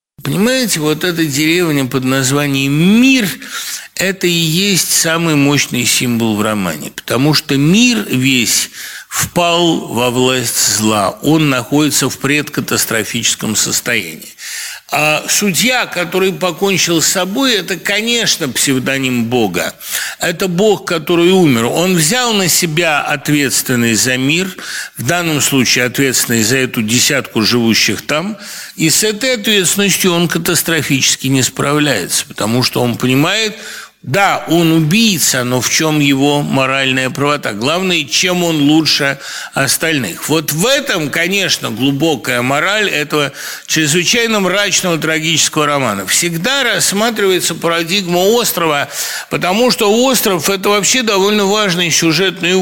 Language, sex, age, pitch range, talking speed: English, male, 60-79, 135-185 Hz, 120 wpm